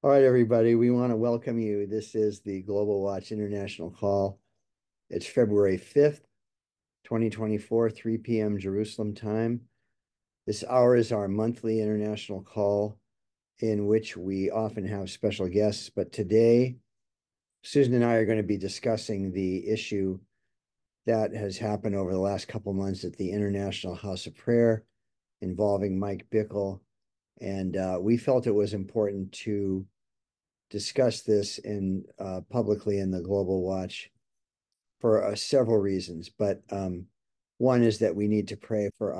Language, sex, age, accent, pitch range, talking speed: English, male, 50-69, American, 95-110 Hz, 150 wpm